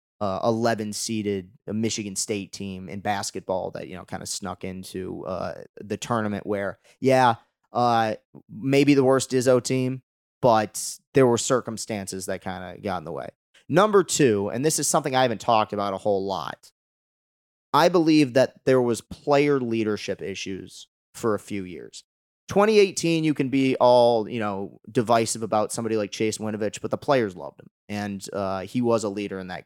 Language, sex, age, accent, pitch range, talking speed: English, male, 30-49, American, 100-125 Hz, 175 wpm